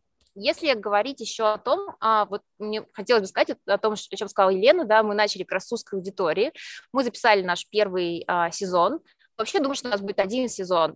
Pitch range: 190-230 Hz